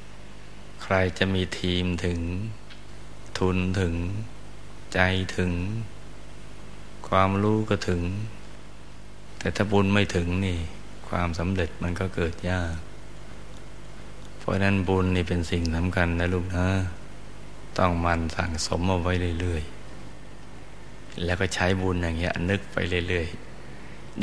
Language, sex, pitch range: Thai, male, 85-95 Hz